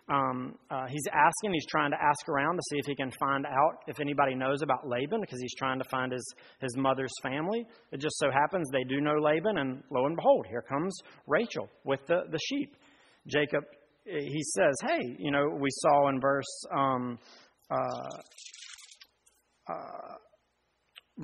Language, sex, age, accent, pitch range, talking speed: English, male, 40-59, American, 135-195 Hz, 175 wpm